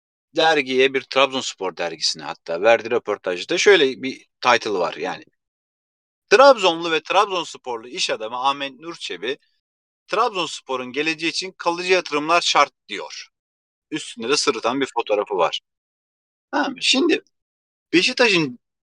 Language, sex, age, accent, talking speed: Turkish, male, 40-59, native, 110 wpm